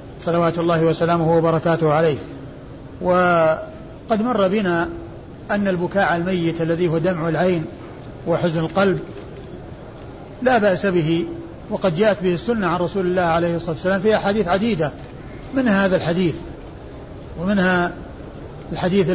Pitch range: 165-185 Hz